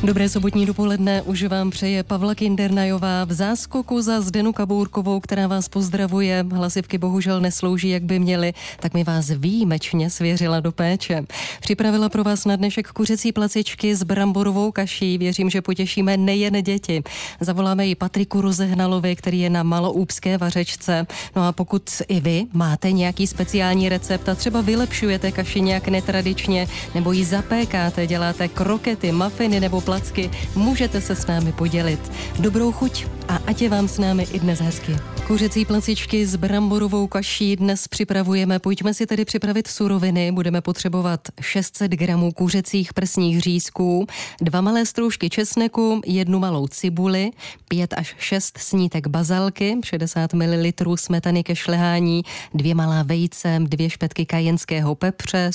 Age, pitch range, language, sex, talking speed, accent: 20-39, 175-200 Hz, Czech, female, 145 wpm, native